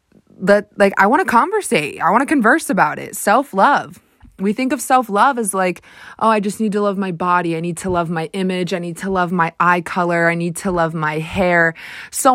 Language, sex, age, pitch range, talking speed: English, female, 20-39, 165-200 Hz, 230 wpm